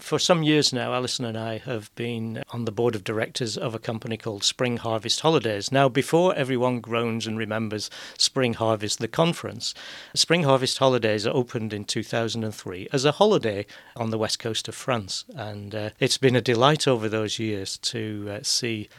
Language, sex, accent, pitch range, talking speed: English, male, British, 110-140 Hz, 185 wpm